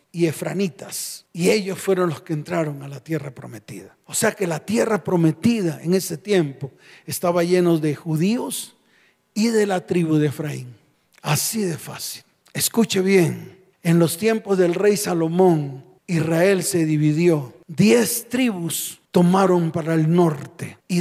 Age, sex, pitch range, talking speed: 40-59, male, 160-200 Hz, 150 wpm